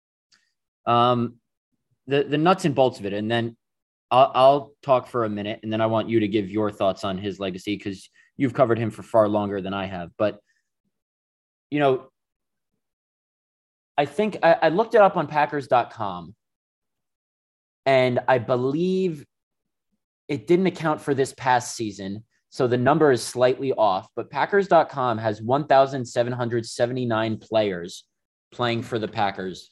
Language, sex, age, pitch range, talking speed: English, male, 30-49, 110-145 Hz, 150 wpm